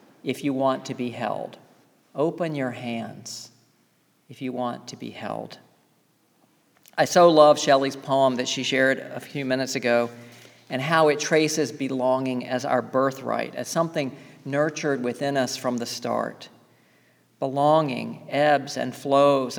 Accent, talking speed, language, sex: American, 145 wpm, English, male